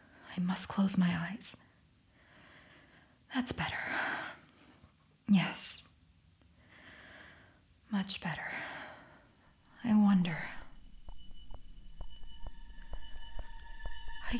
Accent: American